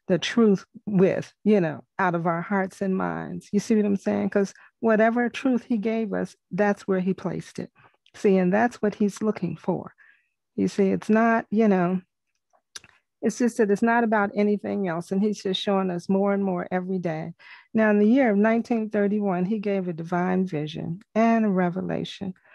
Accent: American